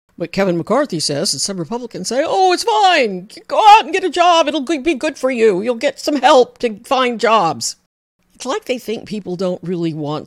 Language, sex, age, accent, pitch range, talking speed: English, female, 60-79, American, 135-200 Hz, 215 wpm